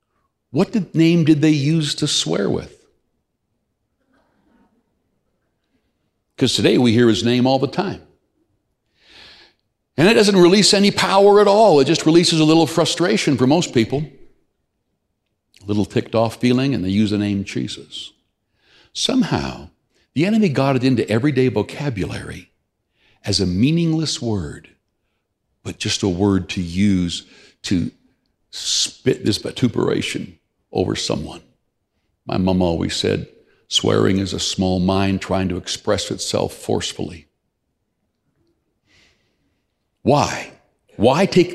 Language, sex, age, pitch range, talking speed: English, male, 60-79, 95-145 Hz, 125 wpm